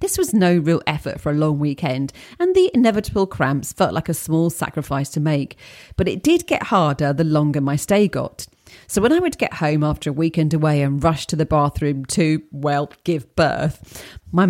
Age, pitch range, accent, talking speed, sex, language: 40-59, 150-200 Hz, British, 205 wpm, female, English